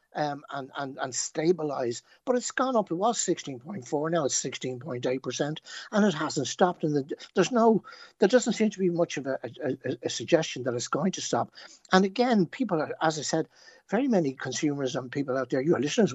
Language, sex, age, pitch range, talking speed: English, male, 60-79, 130-180 Hz, 205 wpm